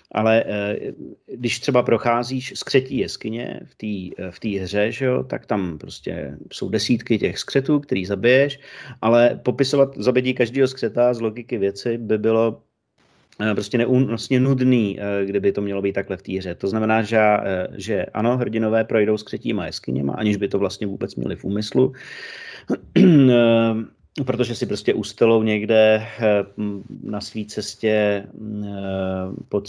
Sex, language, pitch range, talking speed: male, Slovak, 100-120 Hz, 135 wpm